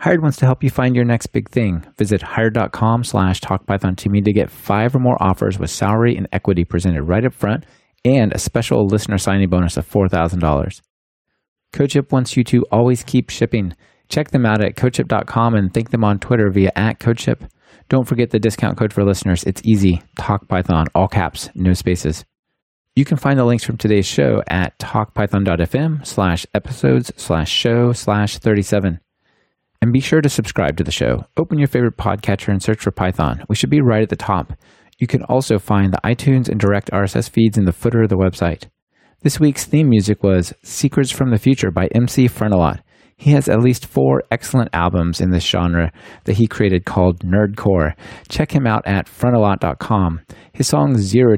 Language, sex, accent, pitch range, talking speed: English, male, American, 95-125 Hz, 190 wpm